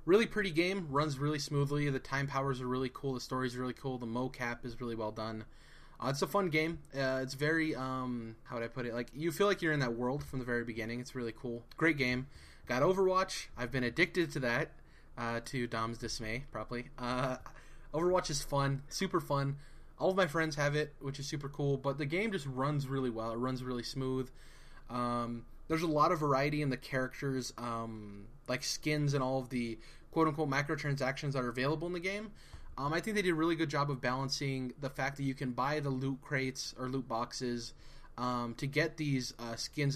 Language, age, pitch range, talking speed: English, 20-39, 125-150 Hz, 220 wpm